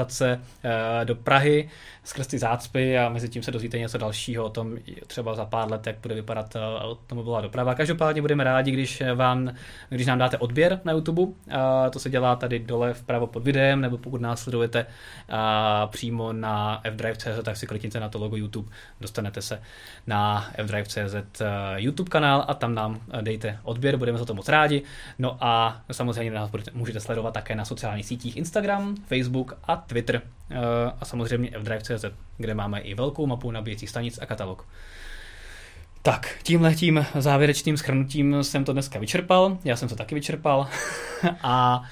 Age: 20-39